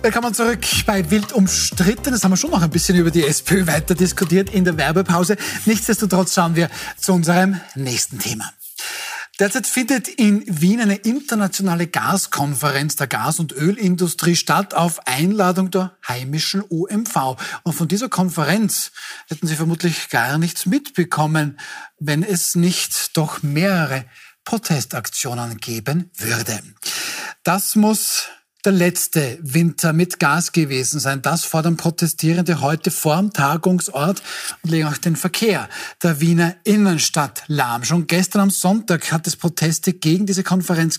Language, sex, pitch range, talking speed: German, male, 155-190 Hz, 140 wpm